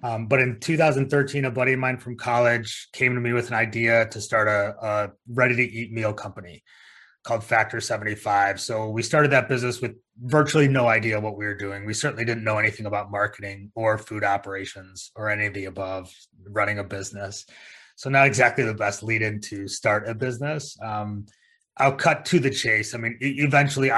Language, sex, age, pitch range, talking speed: English, male, 30-49, 105-125 Hz, 190 wpm